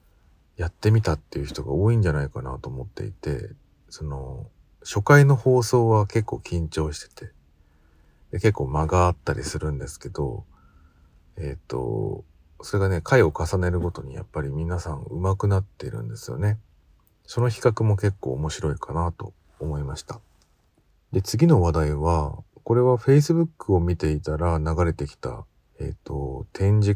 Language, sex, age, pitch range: Japanese, male, 40-59, 75-105 Hz